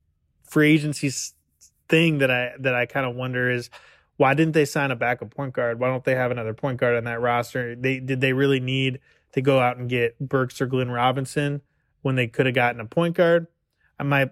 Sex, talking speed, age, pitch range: male, 220 wpm, 20-39, 120-140 Hz